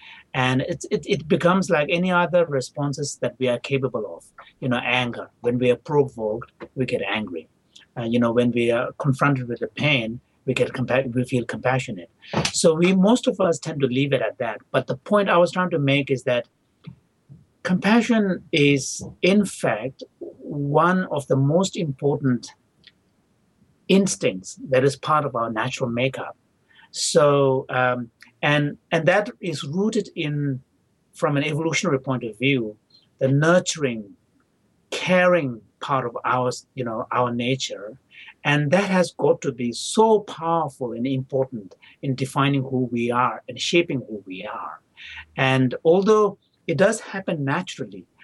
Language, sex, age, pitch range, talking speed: English, male, 60-79, 125-175 Hz, 160 wpm